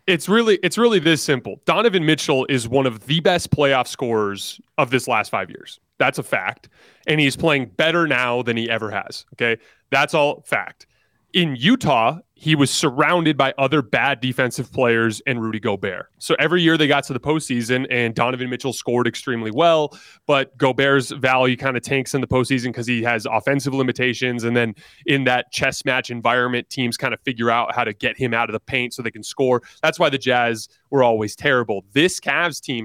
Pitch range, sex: 120-150 Hz, male